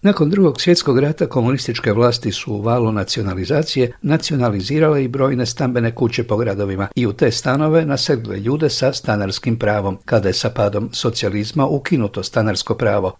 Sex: male